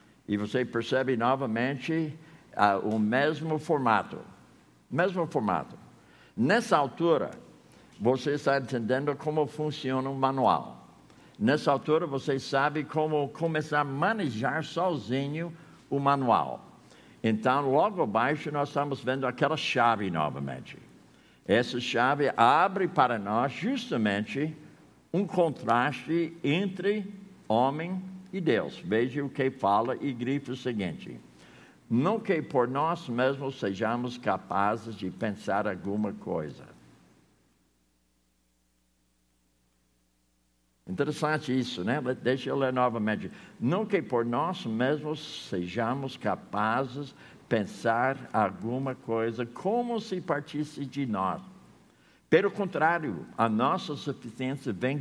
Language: Portuguese